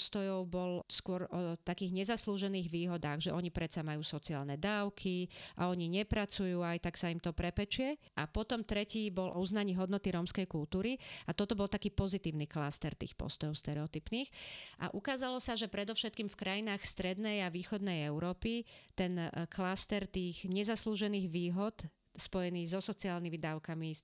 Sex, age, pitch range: female, 40-59, 175-215 Hz